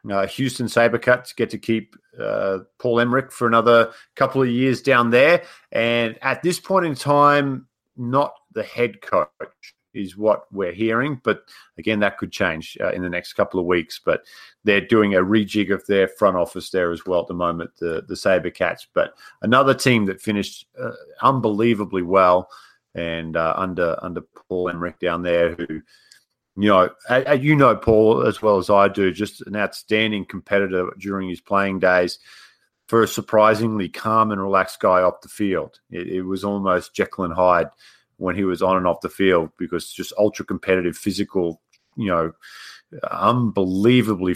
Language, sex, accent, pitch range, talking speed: English, male, Australian, 90-115 Hz, 170 wpm